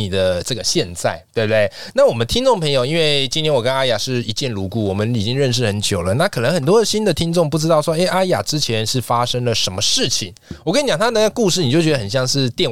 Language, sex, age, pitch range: Chinese, male, 20-39, 105-140 Hz